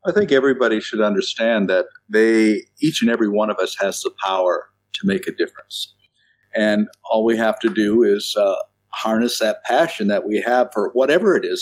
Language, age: English, 50-69